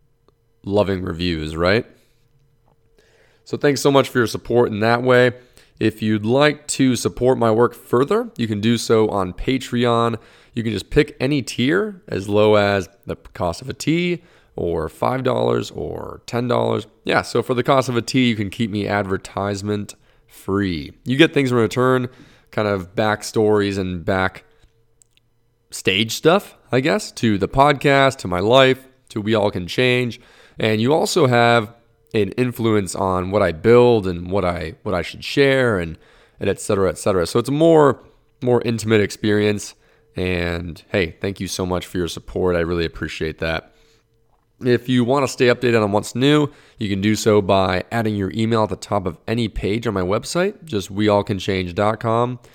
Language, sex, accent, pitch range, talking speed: English, male, American, 100-125 Hz, 175 wpm